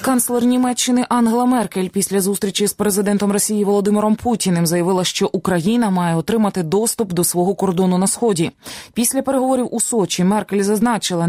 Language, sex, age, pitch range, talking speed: Ukrainian, female, 20-39, 170-215 Hz, 150 wpm